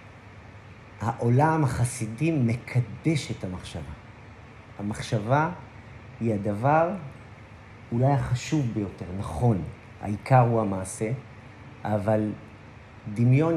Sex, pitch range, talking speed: male, 110-140 Hz, 75 wpm